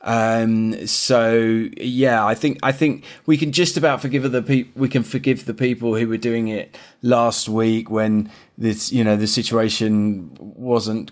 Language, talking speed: Spanish, 175 wpm